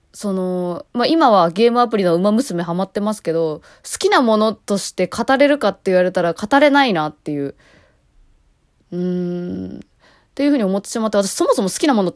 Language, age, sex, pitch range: Japanese, 20-39, female, 170-275 Hz